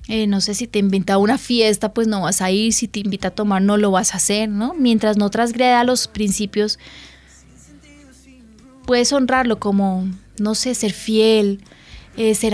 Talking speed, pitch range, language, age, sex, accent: 185 wpm, 210-265 Hz, Spanish, 20-39, female, Colombian